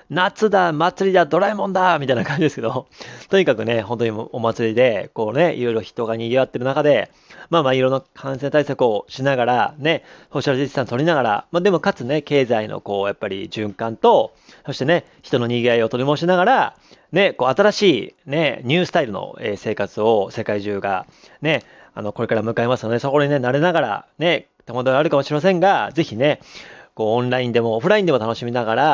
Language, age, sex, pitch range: Japanese, 30-49, male, 115-155 Hz